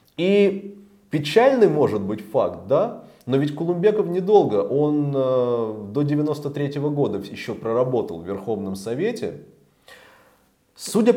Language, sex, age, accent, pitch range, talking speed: Russian, male, 20-39, native, 110-155 Hz, 105 wpm